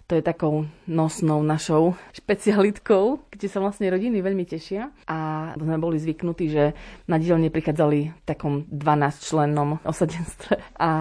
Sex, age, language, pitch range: female, 30-49, Slovak, 150-180 Hz